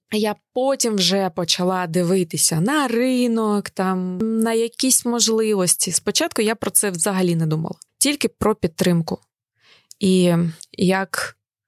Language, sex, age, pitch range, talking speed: Ukrainian, female, 20-39, 175-210 Hz, 120 wpm